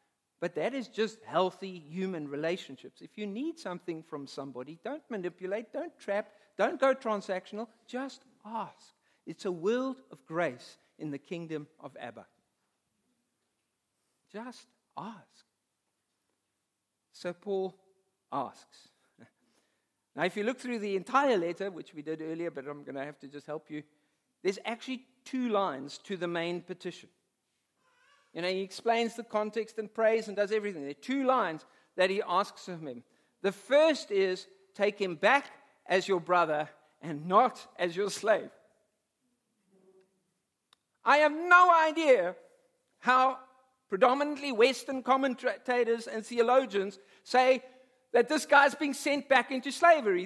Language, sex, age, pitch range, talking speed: English, male, 50-69, 185-270 Hz, 140 wpm